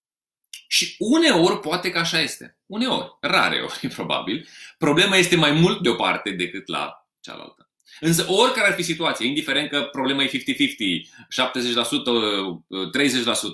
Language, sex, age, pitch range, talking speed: Romanian, male, 30-49, 120-195 Hz, 135 wpm